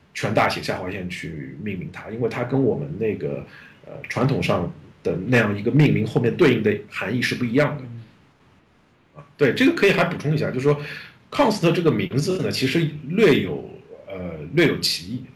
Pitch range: 95-145 Hz